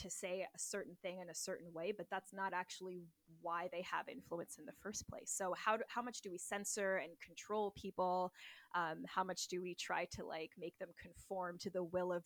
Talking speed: 230 wpm